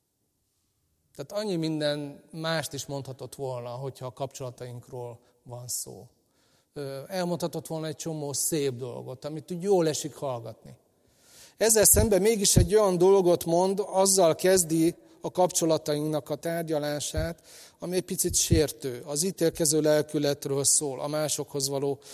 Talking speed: 125 wpm